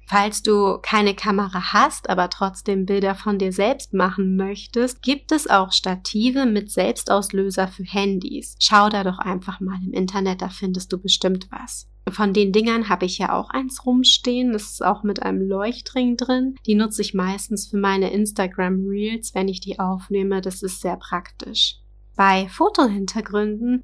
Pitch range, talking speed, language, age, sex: 195-230 Hz, 170 wpm, German, 30-49, female